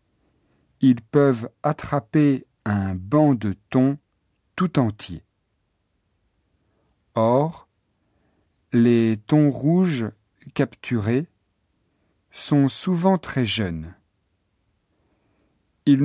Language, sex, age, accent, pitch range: Japanese, male, 50-69, French, 100-140 Hz